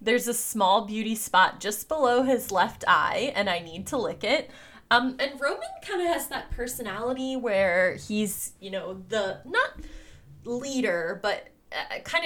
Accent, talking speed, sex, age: American, 160 wpm, female, 20-39